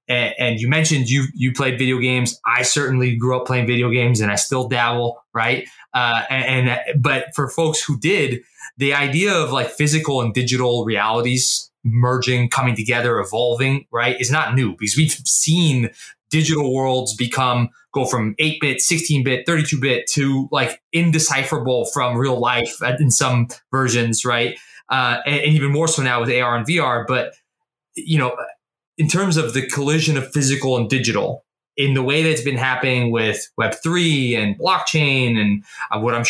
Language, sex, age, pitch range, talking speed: English, male, 20-39, 120-150 Hz, 175 wpm